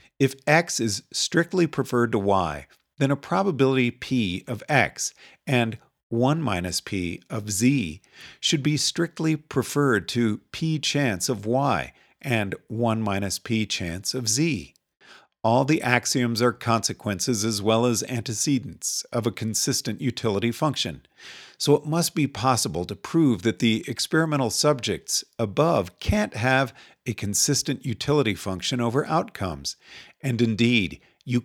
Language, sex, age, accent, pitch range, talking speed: English, male, 50-69, American, 105-130 Hz, 135 wpm